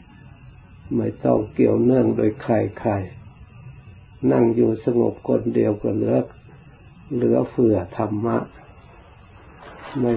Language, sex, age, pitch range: Thai, male, 60-79, 110-120 Hz